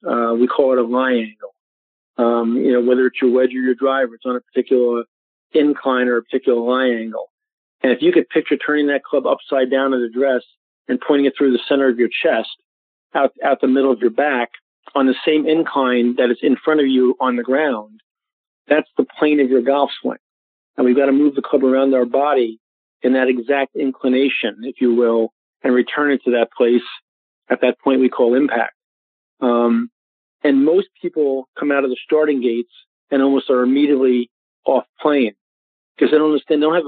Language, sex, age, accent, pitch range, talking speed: English, male, 40-59, American, 125-145 Hz, 210 wpm